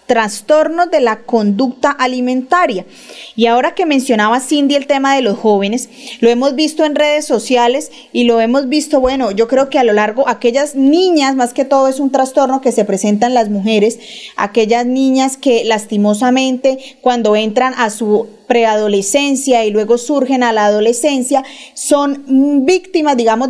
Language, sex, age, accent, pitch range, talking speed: Spanish, female, 30-49, Colombian, 230-280 Hz, 160 wpm